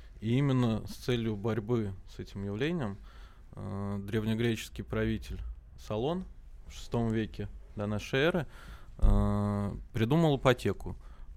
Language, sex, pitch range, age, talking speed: Russian, male, 100-115 Hz, 20-39, 100 wpm